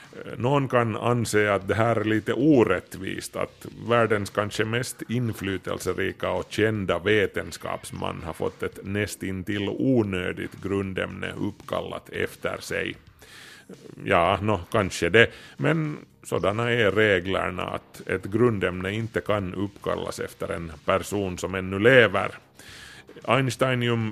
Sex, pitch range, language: male, 90-110 Hz, Swedish